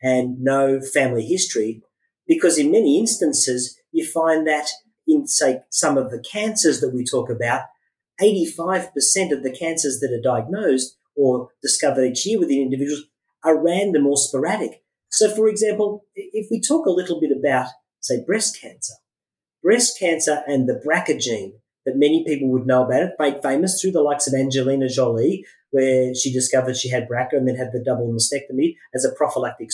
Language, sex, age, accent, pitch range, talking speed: English, male, 40-59, Australian, 130-190 Hz, 180 wpm